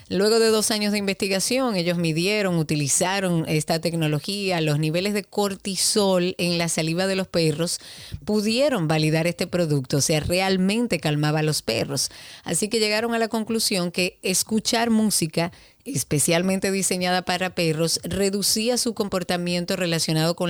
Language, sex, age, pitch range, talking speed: Spanish, female, 30-49, 165-200 Hz, 145 wpm